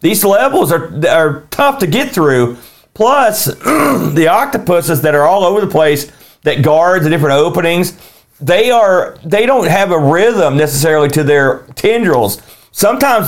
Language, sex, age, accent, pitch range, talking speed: English, male, 40-59, American, 155-205 Hz, 155 wpm